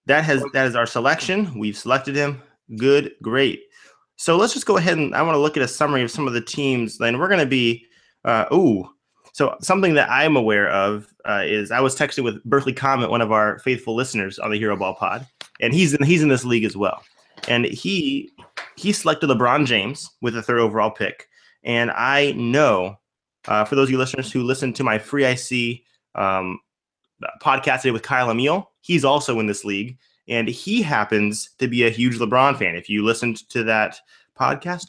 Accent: American